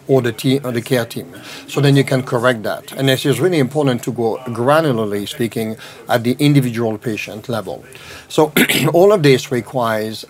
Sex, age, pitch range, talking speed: male, 60-79, 115-135 Hz, 185 wpm